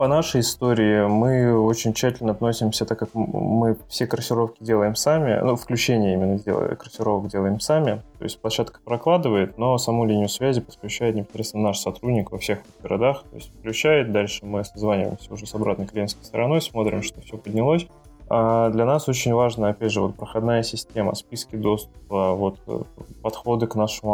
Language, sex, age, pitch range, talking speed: Russian, male, 20-39, 100-115 Hz, 165 wpm